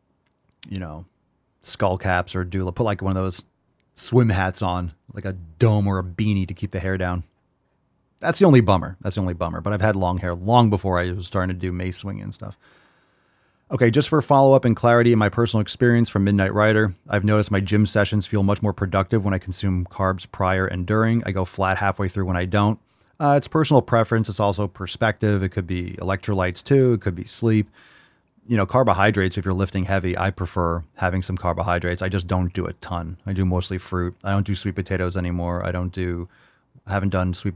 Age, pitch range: 30-49, 90-105 Hz